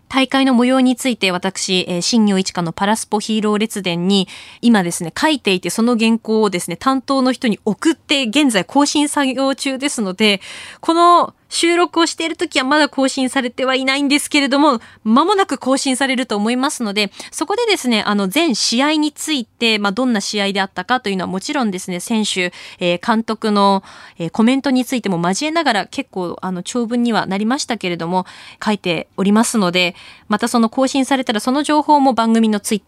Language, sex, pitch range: Japanese, female, 195-270 Hz